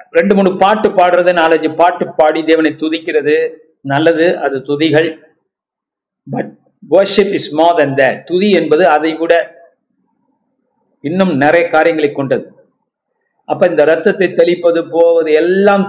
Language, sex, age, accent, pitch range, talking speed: Tamil, male, 50-69, native, 155-215 Hz, 95 wpm